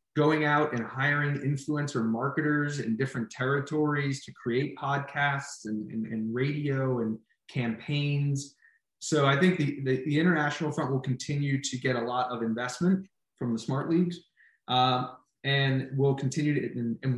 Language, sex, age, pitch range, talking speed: English, male, 20-39, 125-150 Hz, 155 wpm